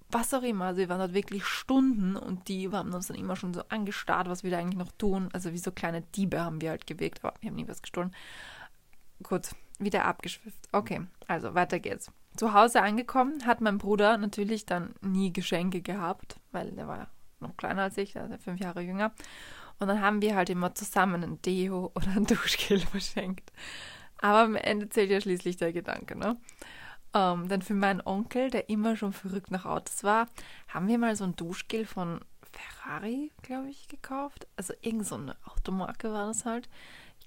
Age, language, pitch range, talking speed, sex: 20-39, German, 180-210 Hz, 200 wpm, female